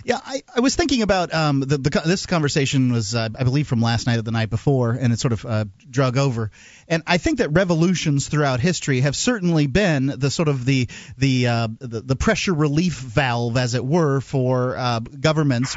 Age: 40-59